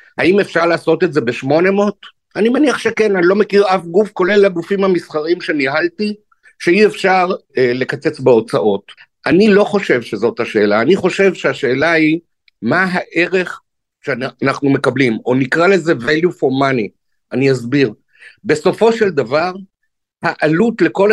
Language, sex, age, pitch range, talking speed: Hebrew, male, 50-69, 140-200 Hz, 140 wpm